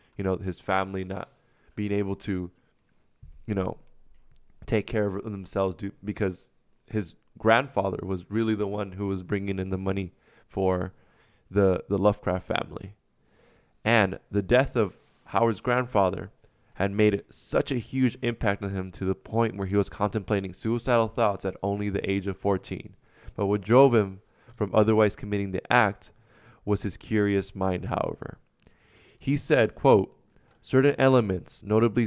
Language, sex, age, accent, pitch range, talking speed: English, male, 20-39, American, 95-115 Hz, 150 wpm